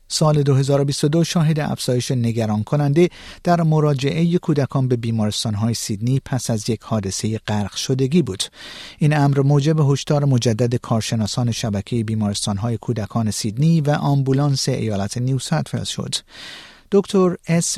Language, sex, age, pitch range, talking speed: Persian, male, 50-69, 115-155 Hz, 130 wpm